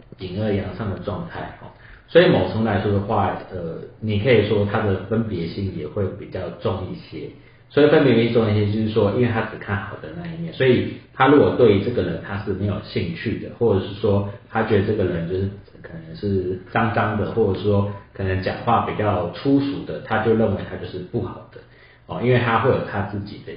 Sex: male